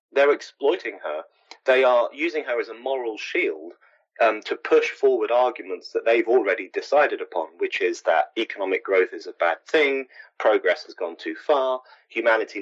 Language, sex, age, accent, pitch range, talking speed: English, male, 30-49, British, 355-435 Hz, 170 wpm